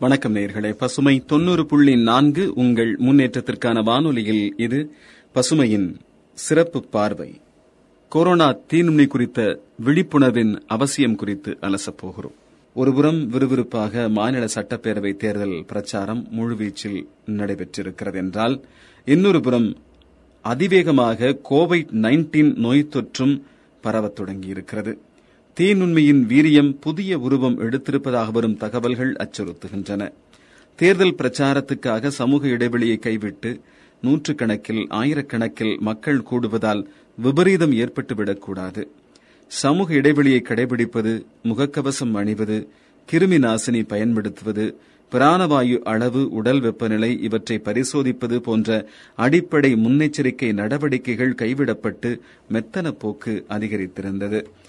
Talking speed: 85 wpm